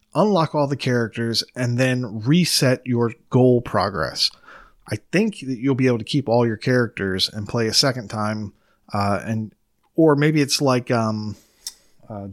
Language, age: English, 30-49